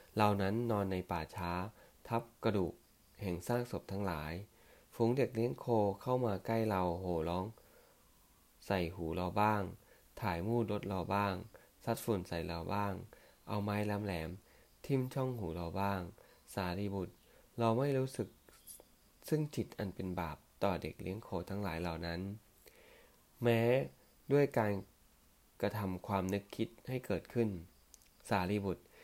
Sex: male